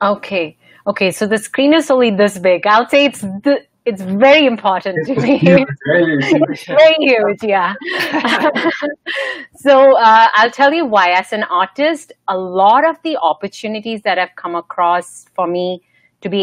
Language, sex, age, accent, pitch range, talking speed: English, female, 30-49, Indian, 175-225 Hz, 160 wpm